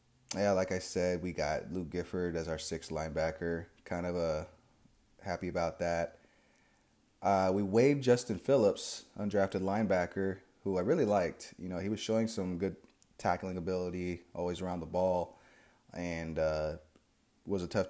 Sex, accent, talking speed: male, American, 160 wpm